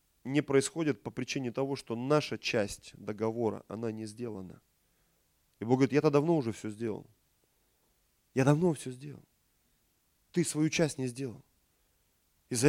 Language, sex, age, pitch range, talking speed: Russian, male, 30-49, 110-155 Hz, 140 wpm